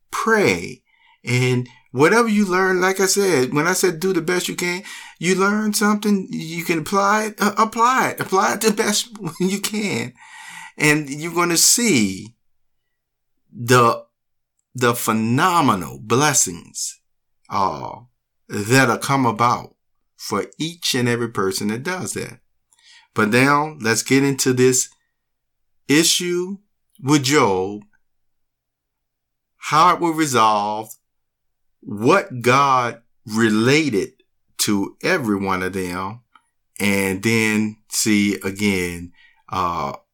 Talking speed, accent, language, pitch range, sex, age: 120 wpm, American, English, 105-175 Hz, male, 50-69